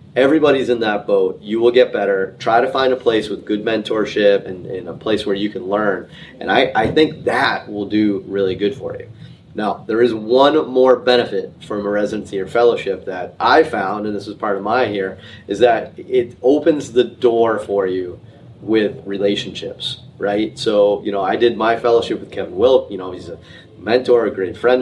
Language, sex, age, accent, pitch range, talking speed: English, male, 30-49, American, 100-125 Hz, 205 wpm